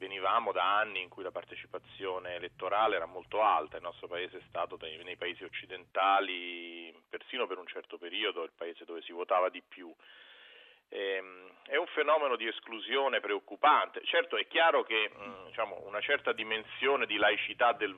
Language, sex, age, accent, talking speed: Italian, male, 40-59, native, 155 wpm